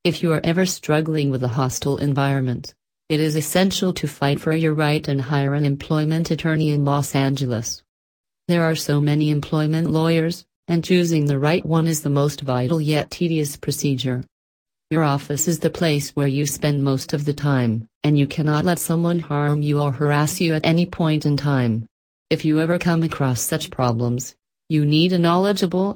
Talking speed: 185 wpm